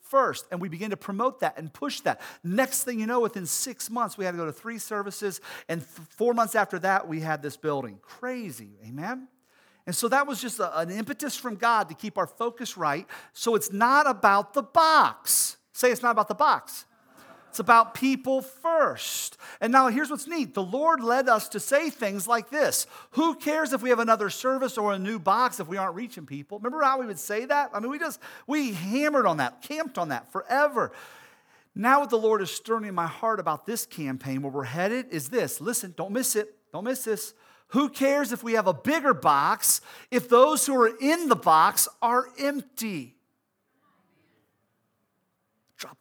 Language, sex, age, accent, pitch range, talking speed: English, male, 40-59, American, 190-265 Hz, 200 wpm